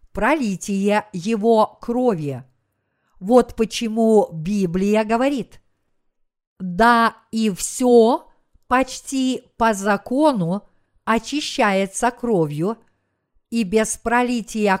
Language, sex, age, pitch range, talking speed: Russian, female, 50-69, 180-240 Hz, 75 wpm